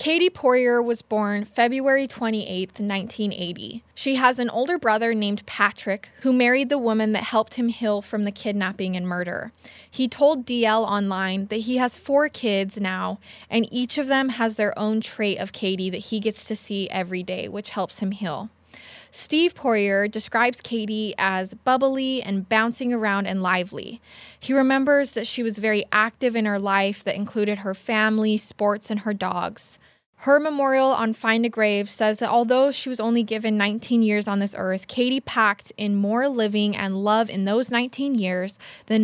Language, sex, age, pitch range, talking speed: English, female, 20-39, 200-240 Hz, 180 wpm